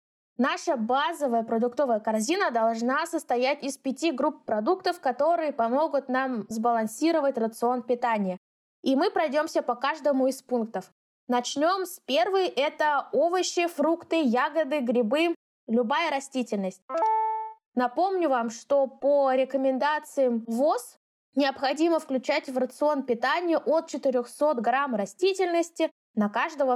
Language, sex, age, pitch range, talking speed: Russian, female, 20-39, 245-315 Hz, 110 wpm